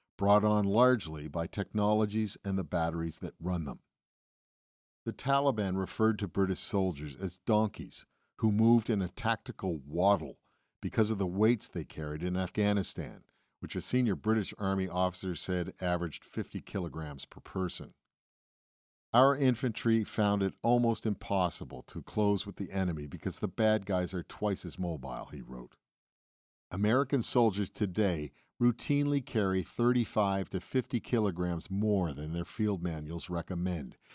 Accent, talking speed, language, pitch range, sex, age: American, 140 wpm, English, 85-110 Hz, male, 50-69